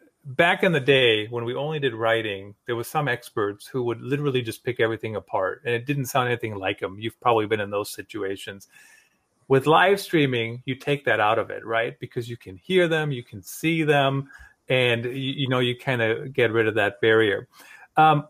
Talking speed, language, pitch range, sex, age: 215 wpm, English, 115-150 Hz, male, 40-59